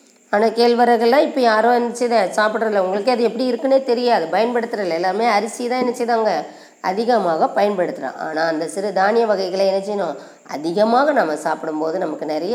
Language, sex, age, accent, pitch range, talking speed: Tamil, female, 20-39, native, 200-285 Hz, 155 wpm